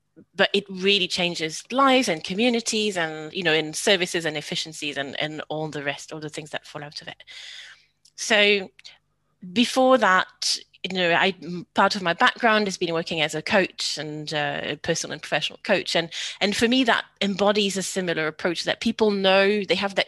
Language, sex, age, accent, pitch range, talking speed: English, female, 30-49, British, 155-200 Hz, 195 wpm